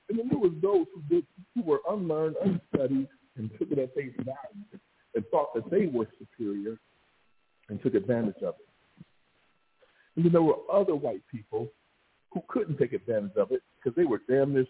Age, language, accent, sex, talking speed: 50-69, English, American, male, 185 wpm